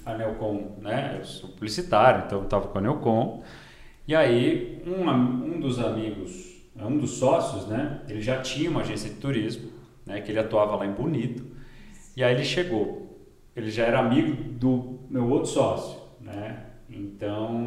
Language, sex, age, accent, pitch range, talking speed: Portuguese, male, 40-59, Brazilian, 110-130 Hz, 170 wpm